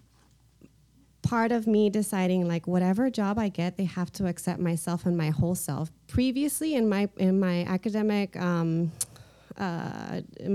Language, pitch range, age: English, 170-200 Hz, 30-49